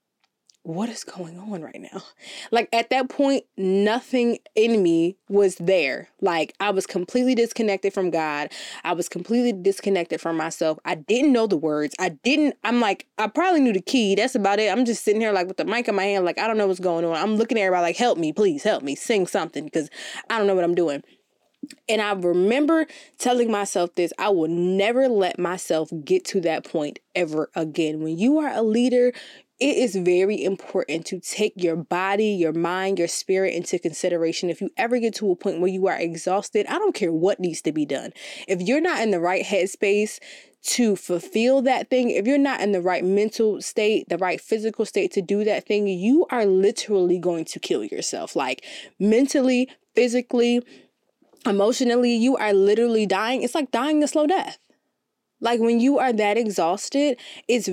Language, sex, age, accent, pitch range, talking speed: English, female, 20-39, American, 180-240 Hz, 200 wpm